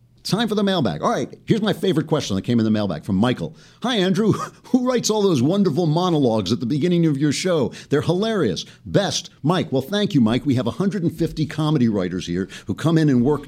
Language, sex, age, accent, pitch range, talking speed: English, male, 50-69, American, 115-190 Hz, 225 wpm